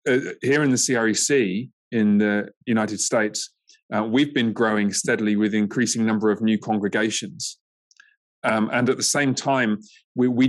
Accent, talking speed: British, 160 wpm